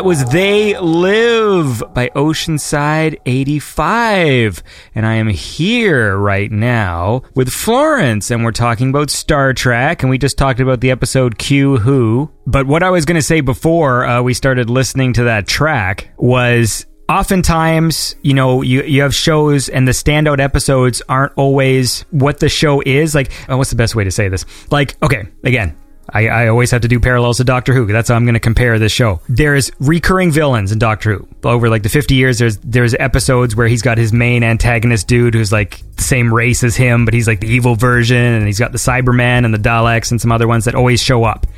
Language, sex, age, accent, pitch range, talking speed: English, male, 30-49, American, 115-140 Hz, 200 wpm